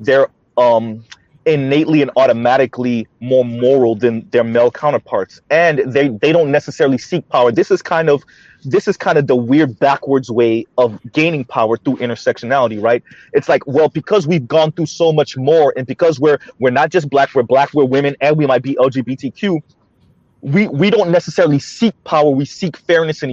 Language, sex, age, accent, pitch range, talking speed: English, male, 30-49, American, 135-170 Hz, 185 wpm